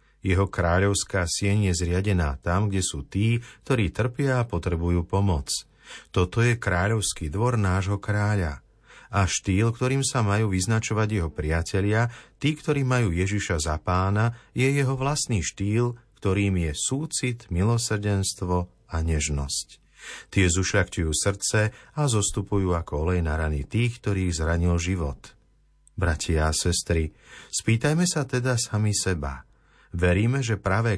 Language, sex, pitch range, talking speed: Slovak, male, 85-110 Hz, 130 wpm